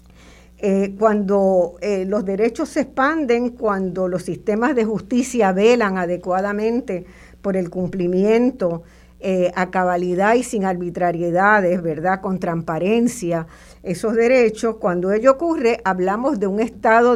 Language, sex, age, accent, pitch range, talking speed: Spanish, female, 60-79, American, 175-225 Hz, 120 wpm